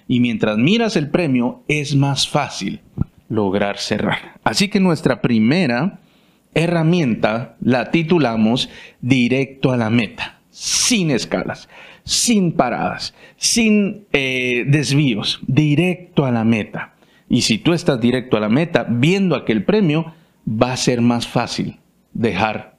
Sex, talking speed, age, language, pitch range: male, 130 wpm, 50-69, Spanish, 120-170 Hz